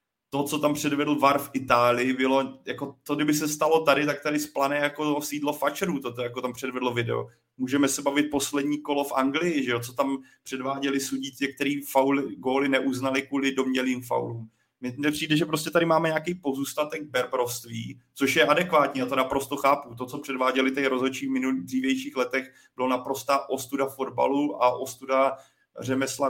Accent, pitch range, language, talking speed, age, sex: native, 130-145 Hz, Czech, 175 wpm, 30-49, male